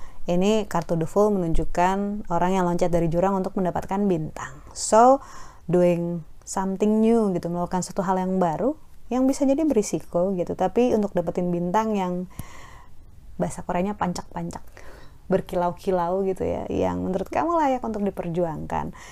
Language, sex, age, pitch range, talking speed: Indonesian, female, 20-39, 175-220 Hz, 140 wpm